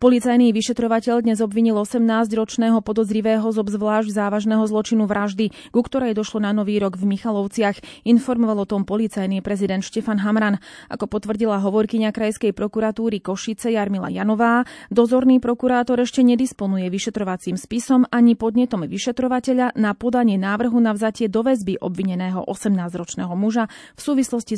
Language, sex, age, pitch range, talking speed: Slovak, female, 30-49, 200-240 Hz, 130 wpm